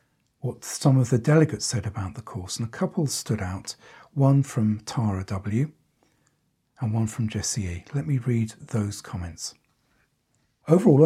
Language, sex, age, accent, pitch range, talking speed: English, male, 50-69, British, 110-150 Hz, 155 wpm